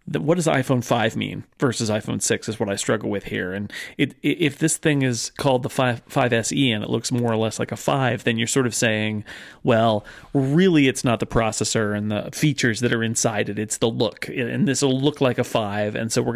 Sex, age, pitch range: male, 40-59, 115-145 Hz